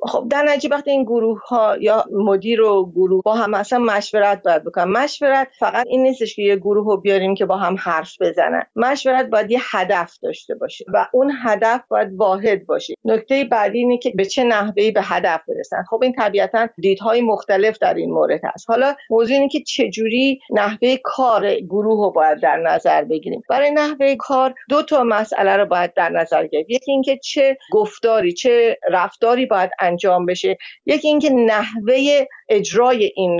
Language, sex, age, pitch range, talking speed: Persian, female, 50-69, 195-265 Hz, 175 wpm